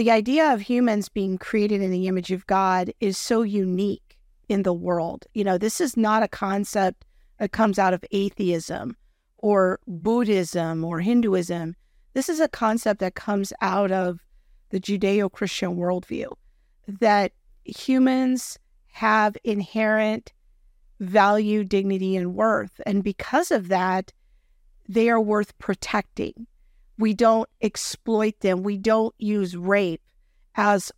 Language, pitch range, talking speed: English, 195-225 Hz, 135 wpm